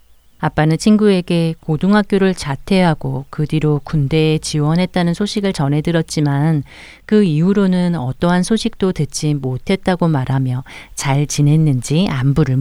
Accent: native